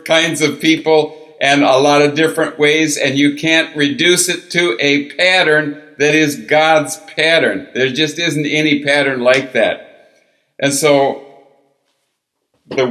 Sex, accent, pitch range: male, American, 125-155 Hz